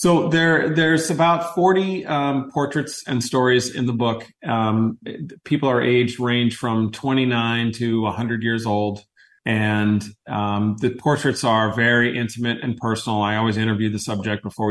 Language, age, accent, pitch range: English, 30-49, American, 105-125 Hz